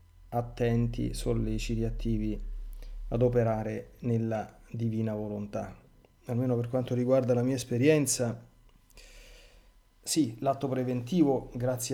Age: 30-49